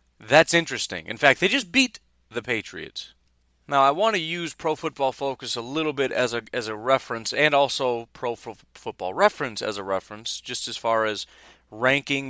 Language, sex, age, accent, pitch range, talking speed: English, male, 30-49, American, 110-140 Hz, 190 wpm